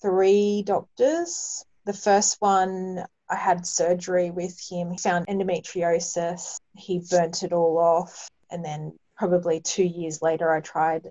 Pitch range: 170-185 Hz